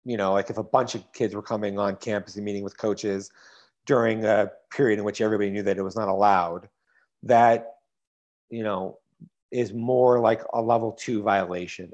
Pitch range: 105-130 Hz